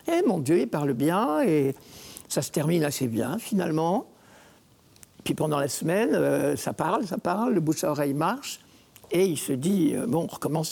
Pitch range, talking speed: 155-200 Hz, 190 wpm